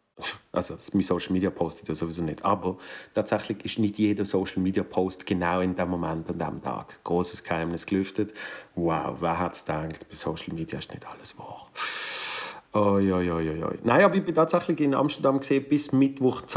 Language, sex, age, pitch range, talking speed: German, male, 40-59, 95-120 Hz, 190 wpm